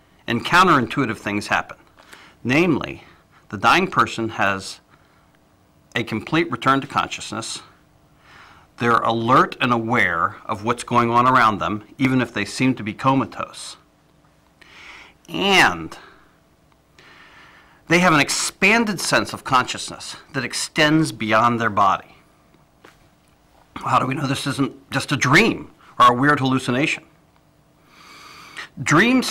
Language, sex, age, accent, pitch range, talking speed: English, male, 50-69, American, 110-140 Hz, 120 wpm